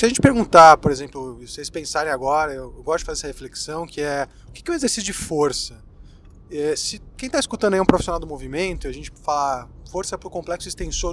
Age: 20-39